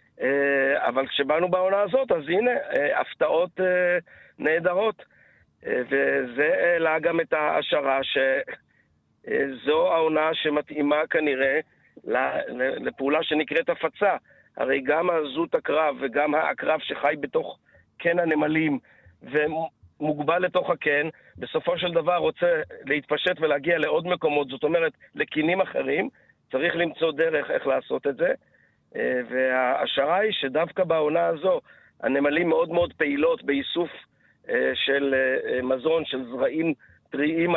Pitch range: 140-175 Hz